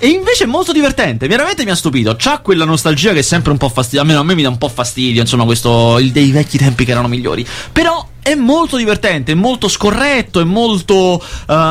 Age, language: 30-49, Italian